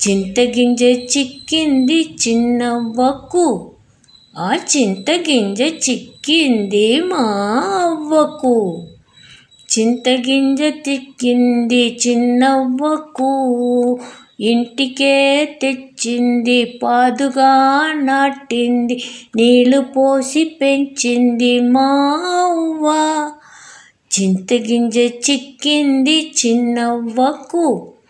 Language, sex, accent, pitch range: English, female, Indian, 240-280 Hz